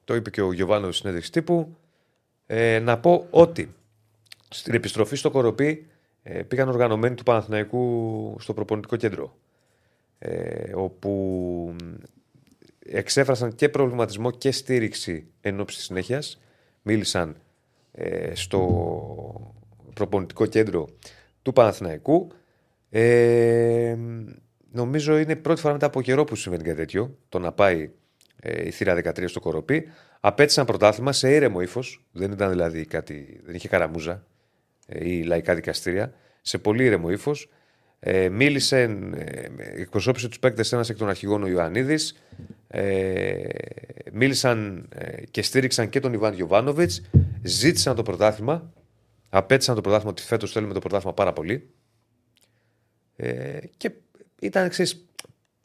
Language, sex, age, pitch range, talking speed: Greek, male, 30-49, 100-135 Hz, 115 wpm